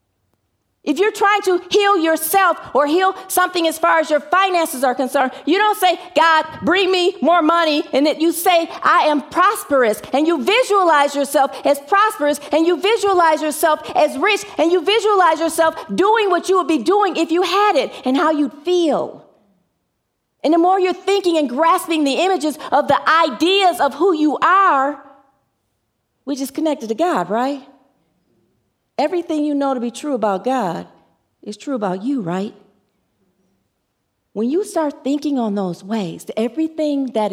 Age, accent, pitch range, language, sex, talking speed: 40-59, American, 245-335 Hz, English, female, 170 wpm